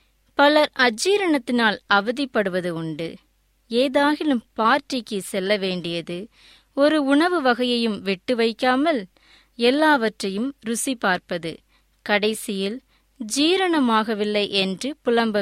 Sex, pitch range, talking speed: female, 200-275 Hz, 80 wpm